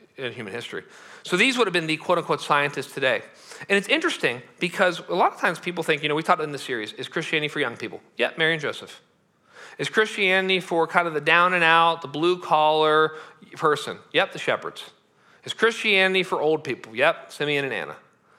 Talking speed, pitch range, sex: 200 wpm, 135-185 Hz, male